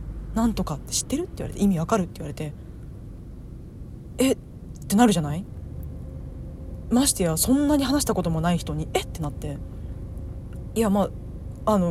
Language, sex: Japanese, female